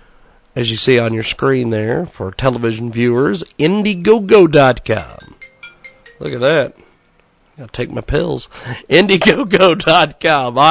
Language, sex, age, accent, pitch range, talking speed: English, male, 50-69, American, 130-175 Hz, 120 wpm